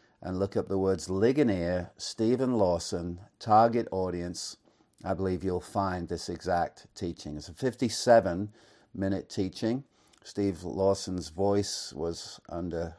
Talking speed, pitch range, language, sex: 125 wpm, 85-105 Hz, English, male